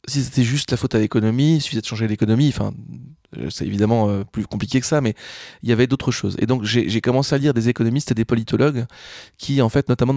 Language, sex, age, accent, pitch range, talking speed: French, male, 20-39, French, 110-130 Hz, 250 wpm